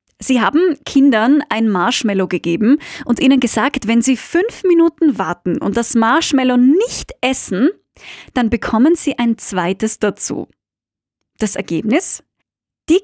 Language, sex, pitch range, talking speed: German, female, 210-275 Hz, 130 wpm